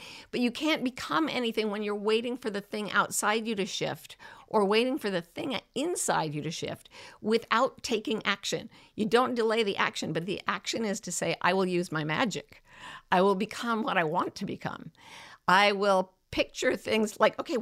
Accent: American